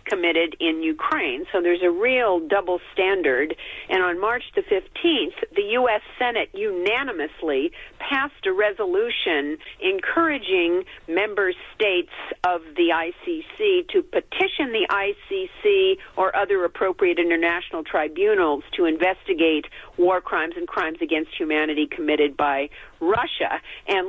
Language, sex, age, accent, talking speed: English, female, 50-69, American, 120 wpm